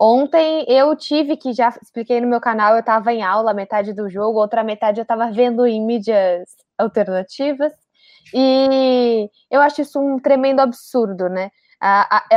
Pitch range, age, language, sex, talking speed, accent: 220-265 Hz, 10-29, Portuguese, female, 160 wpm, Brazilian